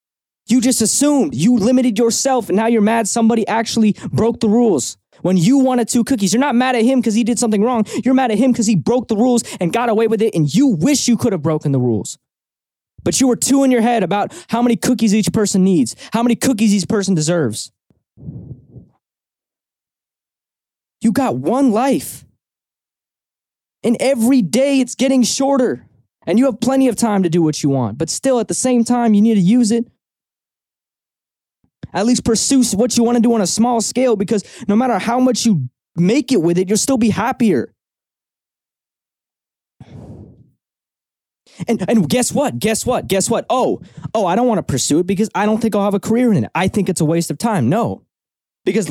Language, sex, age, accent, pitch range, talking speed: English, male, 20-39, American, 200-245 Hz, 205 wpm